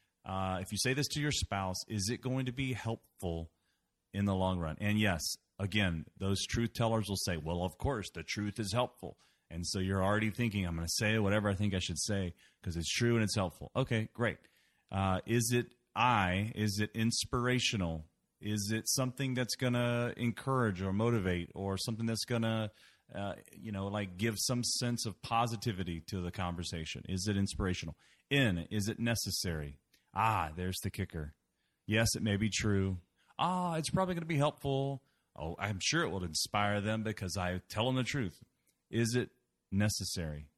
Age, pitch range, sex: 30-49, 90-115 Hz, male